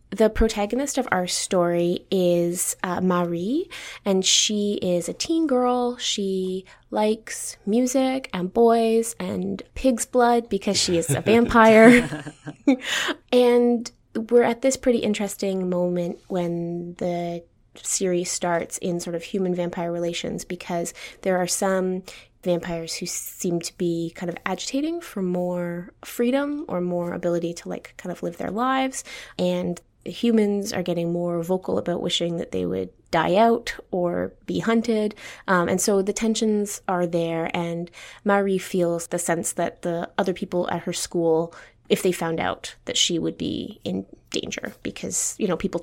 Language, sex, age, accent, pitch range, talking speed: English, female, 20-39, American, 175-230 Hz, 155 wpm